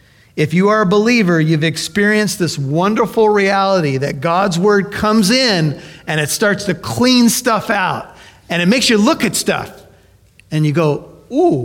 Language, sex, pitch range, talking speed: English, male, 140-180 Hz, 170 wpm